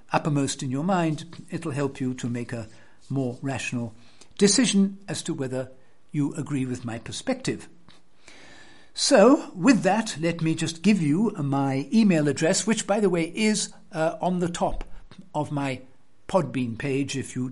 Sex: male